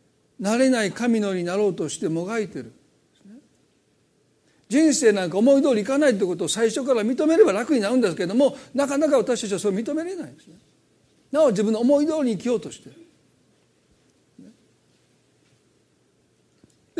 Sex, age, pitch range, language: male, 50-69, 195-265 Hz, Japanese